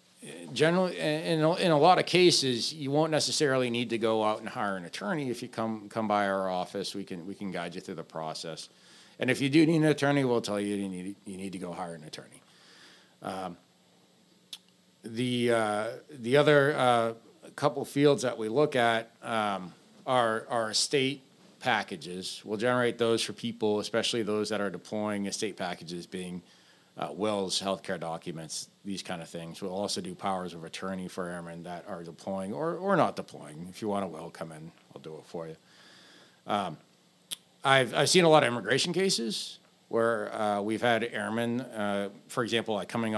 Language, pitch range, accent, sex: English, 95-120 Hz, American, male